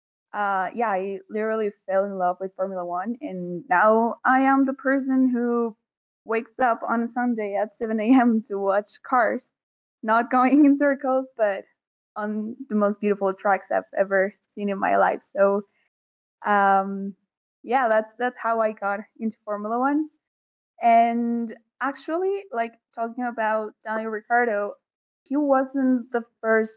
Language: English